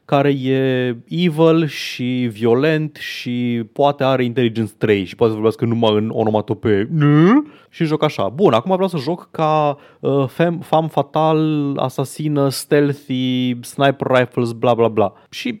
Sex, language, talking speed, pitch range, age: male, Romanian, 140 wpm, 105-140 Hz, 20-39